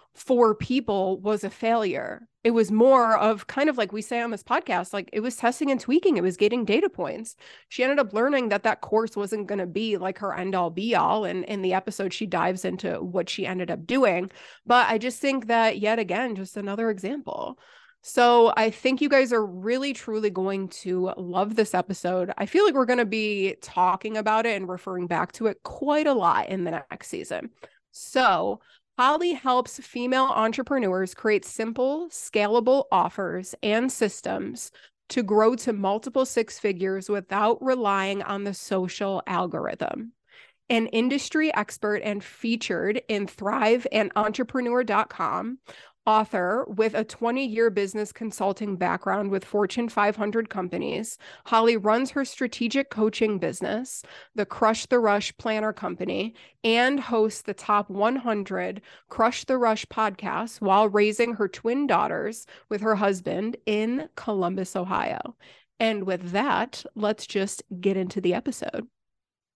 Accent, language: American, English